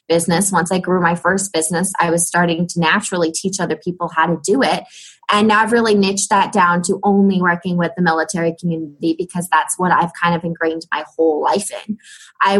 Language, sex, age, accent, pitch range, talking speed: English, female, 20-39, American, 170-200 Hz, 215 wpm